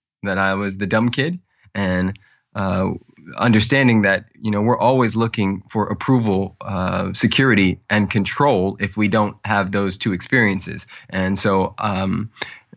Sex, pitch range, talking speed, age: male, 95-110 Hz, 145 wpm, 20-39